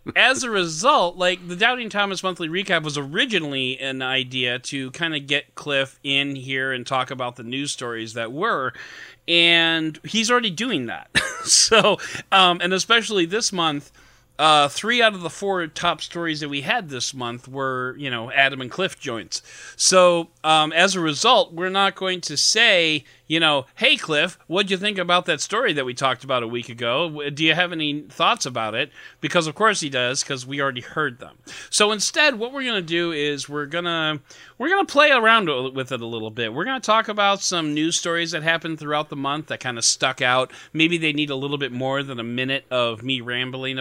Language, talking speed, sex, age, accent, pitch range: English, 205 wpm, male, 40-59, American, 130-180 Hz